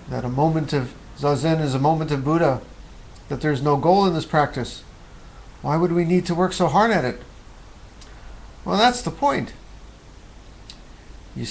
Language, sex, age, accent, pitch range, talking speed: English, male, 50-69, American, 115-160 Hz, 165 wpm